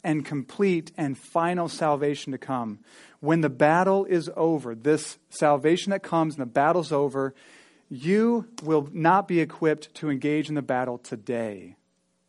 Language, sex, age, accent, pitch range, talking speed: English, male, 30-49, American, 125-190 Hz, 150 wpm